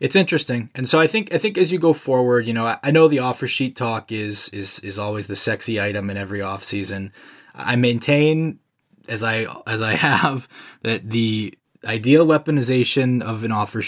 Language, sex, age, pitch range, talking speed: English, male, 20-39, 105-130 Hz, 195 wpm